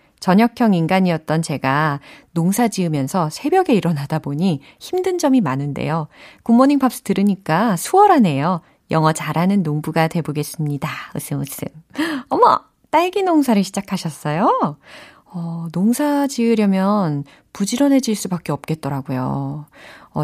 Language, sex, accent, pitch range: Korean, female, native, 155-250 Hz